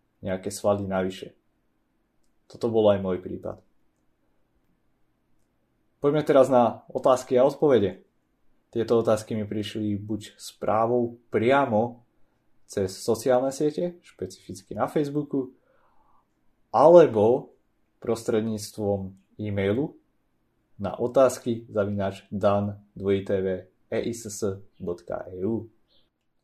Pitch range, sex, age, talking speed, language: 100-120 Hz, male, 30-49, 75 wpm, Slovak